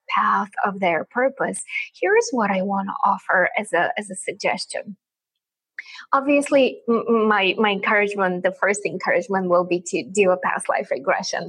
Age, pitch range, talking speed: 20-39, 200-255 Hz, 155 wpm